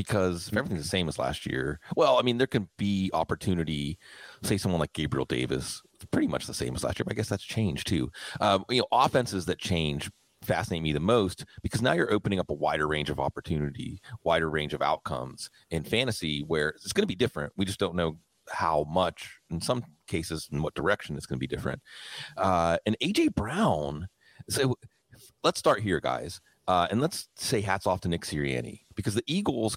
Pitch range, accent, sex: 80-110 Hz, American, male